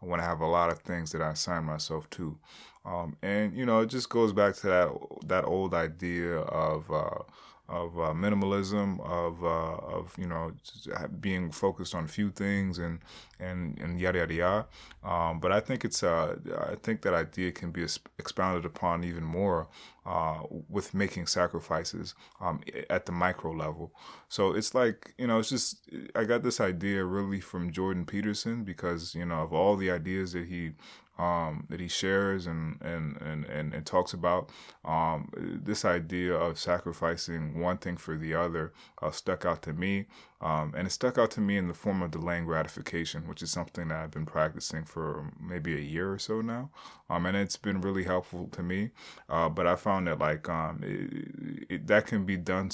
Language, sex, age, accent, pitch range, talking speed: English, male, 20-39, American, 85-100 Hz, 190 wpm